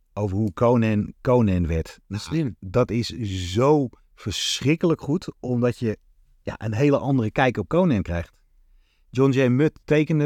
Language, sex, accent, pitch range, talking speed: Dutch, male, Dutch, 100-135 Hz, 140 wpm